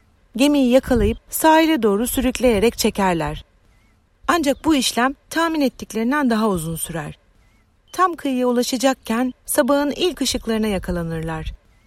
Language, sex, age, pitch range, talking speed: Turkish, female, 40-59, 180-275 Hz, 105 wpm